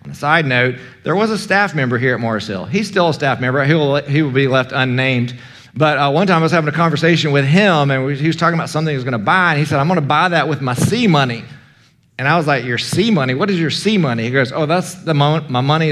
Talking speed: 295 wpm